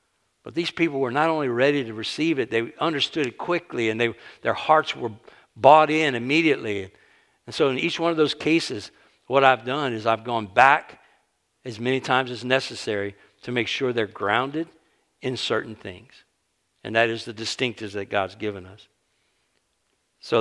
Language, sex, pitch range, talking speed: English, male, 115-140 Hz, 175 wpm